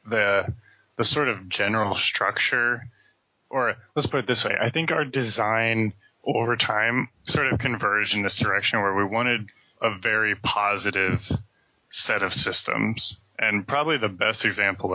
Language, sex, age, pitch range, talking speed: English, male, 20-39, 105-125 Hz, 155 wpm